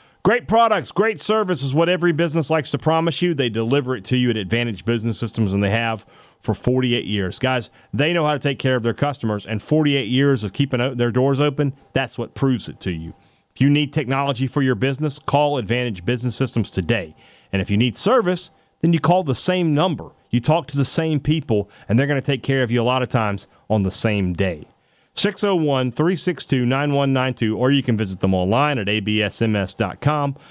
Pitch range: 115-150 Hz